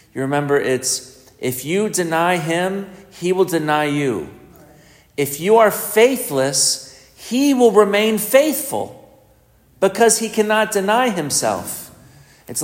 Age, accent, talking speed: 40-59, American, 120 wpm